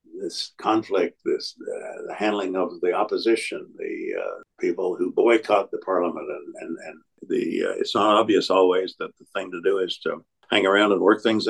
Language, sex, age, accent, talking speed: English, male, 60-79, American, 195 wpm